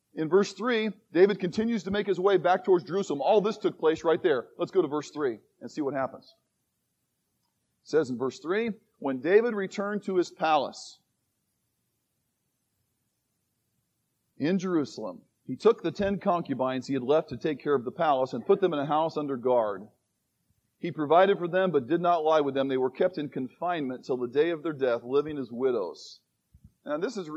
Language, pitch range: English, 140-195 Hz